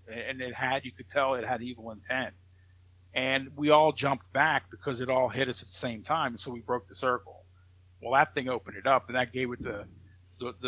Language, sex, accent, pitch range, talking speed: English, male, American, 110-140 Hz, 230 wpm